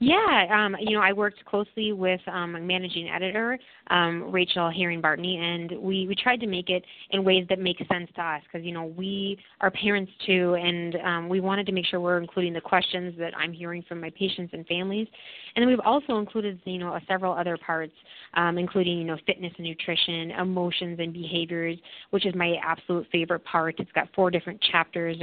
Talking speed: 205 wpm